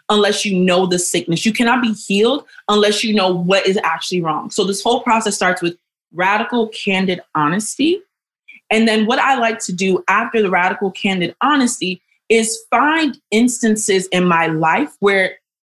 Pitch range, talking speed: 185-245 Hz, 170 wpm